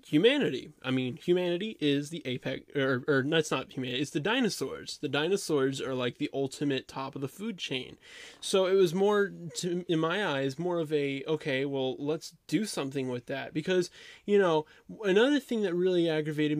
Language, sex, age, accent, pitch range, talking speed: English, male, 20-39, American, 130-175 Hz, 190 wpm